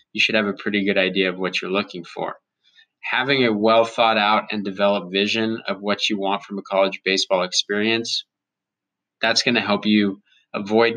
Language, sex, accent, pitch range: English, male, American, 100-115 Hz